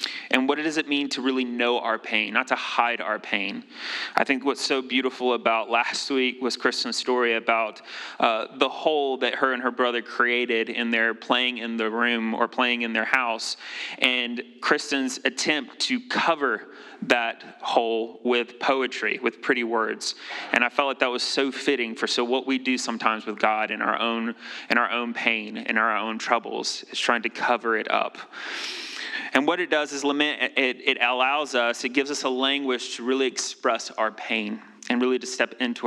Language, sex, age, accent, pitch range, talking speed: English, male, 30-49, American, 120-140 Hz, 195 wpm